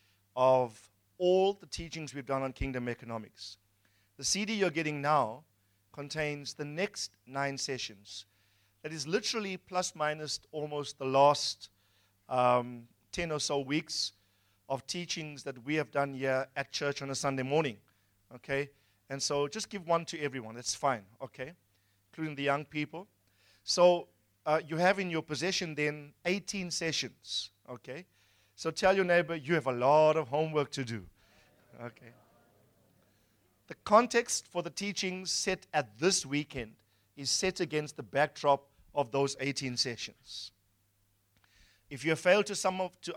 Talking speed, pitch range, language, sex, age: 155 wpm, 110-160 Hz, English, male, 50-69